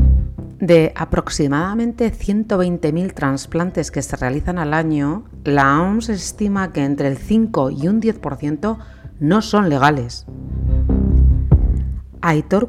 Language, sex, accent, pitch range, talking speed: Spanish, female, Spanish, 140-190 Hz, 110 wpm